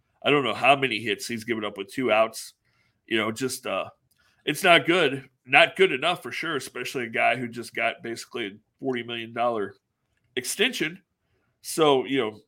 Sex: male